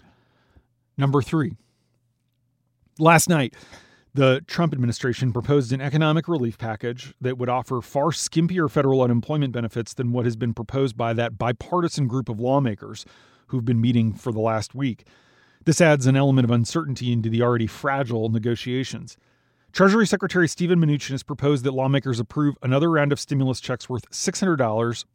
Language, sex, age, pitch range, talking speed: English, male, 40-59, 120-145 Hz, 155 wpm